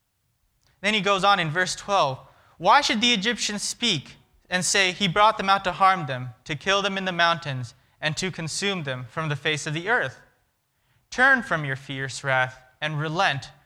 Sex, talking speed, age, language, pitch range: male, 195 wpm, 20-39, English, 135-175 Hz